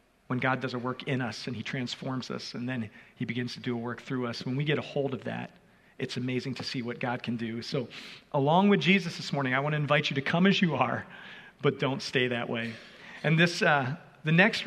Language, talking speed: English, 255 wpm